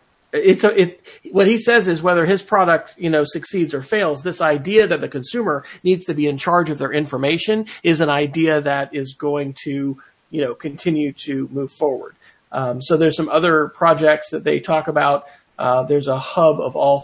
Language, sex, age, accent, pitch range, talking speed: English, male, 40-59, American, 145-180 Hz, 200 wpm